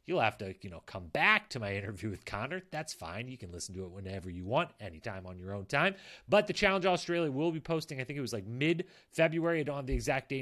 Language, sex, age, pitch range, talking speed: English, male, 30-49, 115-155 Hz, 265 wpm